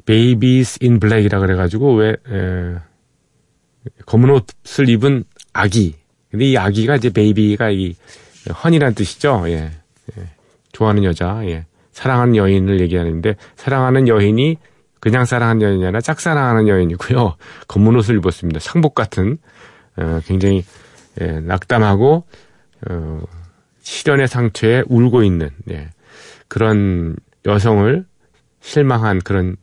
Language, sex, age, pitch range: Korean, male, 40-59, 90-120 Hz